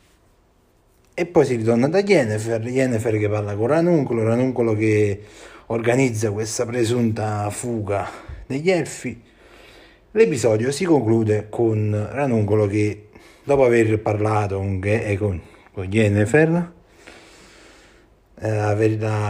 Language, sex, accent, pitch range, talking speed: Italian, male, native, 105-125 Hz, 100 wpm